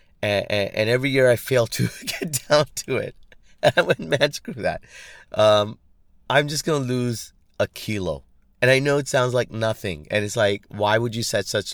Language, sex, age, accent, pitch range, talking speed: English, male, 30-49, American, 95-130 Hz, 210 wpm